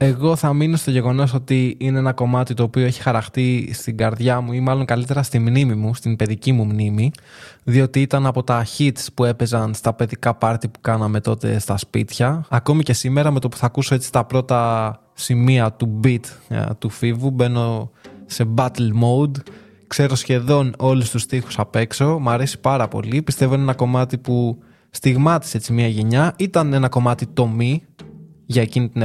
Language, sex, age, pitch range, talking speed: Greek, male, 20-39, 115-135 Hz, 185 wpm